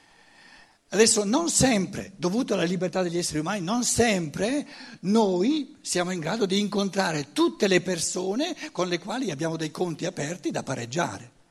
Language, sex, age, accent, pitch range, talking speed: Italian, male, 60-79, native, 165-245 Hz, 150 wpm